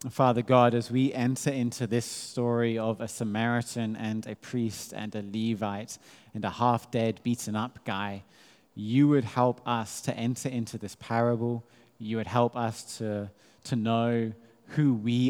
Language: English